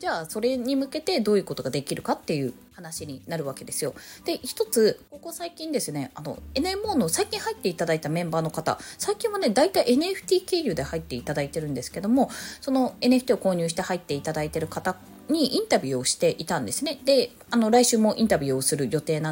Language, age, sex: Japanese, 20-39, female